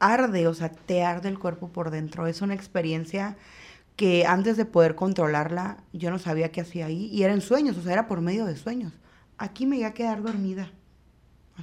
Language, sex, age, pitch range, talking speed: Spanish, female, 30-49, 175-230 Hz, 205 wpm